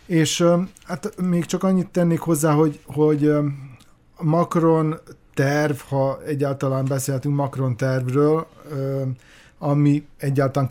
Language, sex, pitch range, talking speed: Hungarian, male, 125-150 Hz, 105 wpm